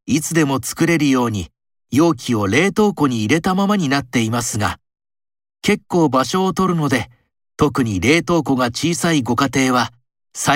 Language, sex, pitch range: Japanese, male, 120-165 Hz